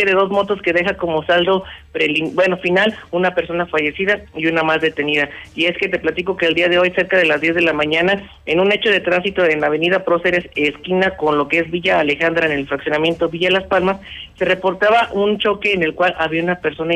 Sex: male